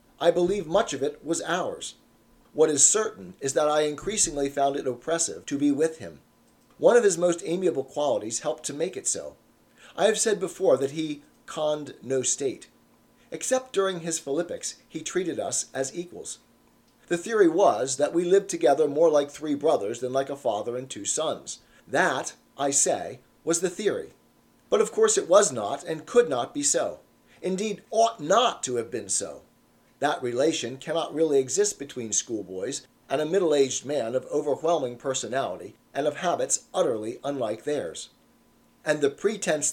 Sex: male